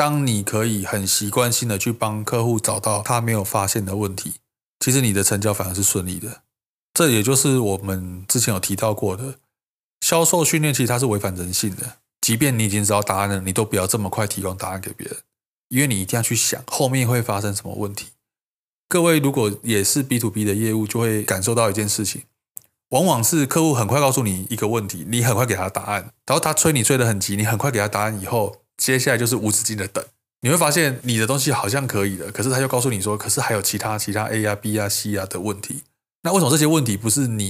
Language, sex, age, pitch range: Chinese, male, 20-39, 105-130 Hz